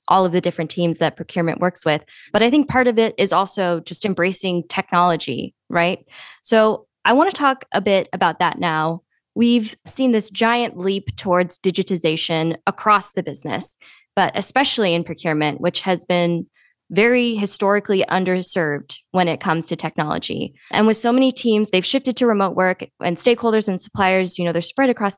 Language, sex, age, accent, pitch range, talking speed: English, female, 20-39, American, 175-220 Hz, 180 wpm